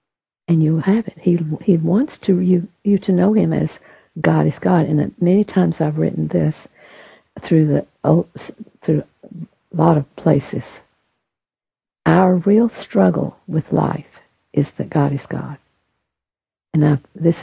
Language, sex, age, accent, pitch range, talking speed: English, female, 60-79, American, 135-180 Hz, 150 wpm